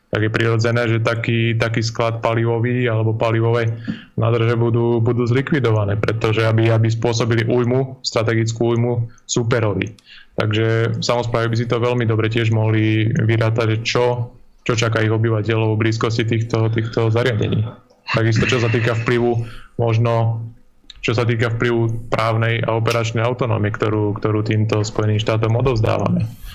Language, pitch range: Slovak, 110-120 Hz